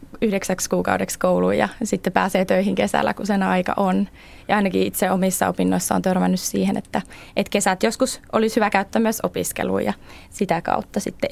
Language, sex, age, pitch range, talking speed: Finnish, female, 20-39, 170-200 Hz, 175 wpm